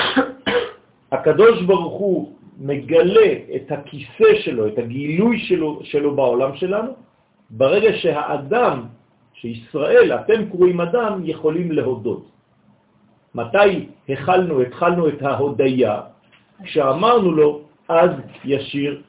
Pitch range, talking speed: 145-220 Hz, 90 wpm